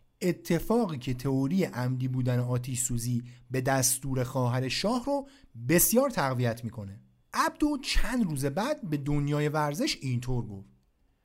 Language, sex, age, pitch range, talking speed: Persian, male, 50-69, 125-200 Hz, 130 wpm